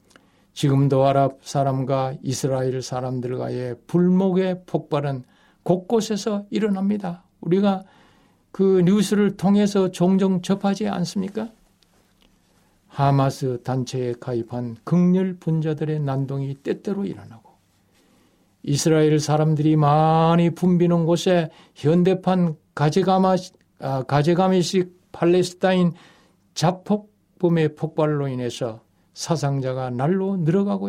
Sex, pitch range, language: male, 140-185 Hz, Korean